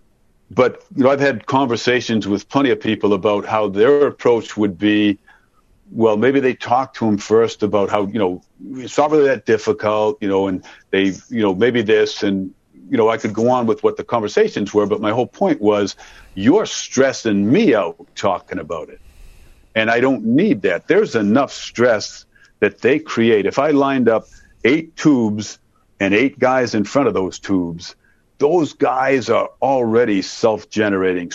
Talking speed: 180 wpm